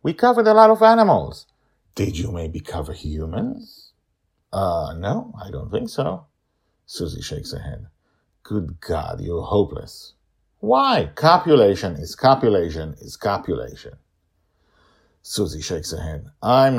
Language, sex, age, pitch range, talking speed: English, male, 50-69, 85-130 Hz, 130 wpm